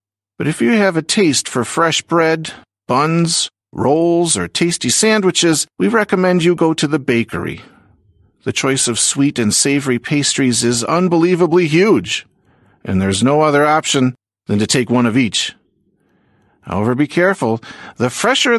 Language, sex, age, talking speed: Slovak, male, 50-69, 150 wpm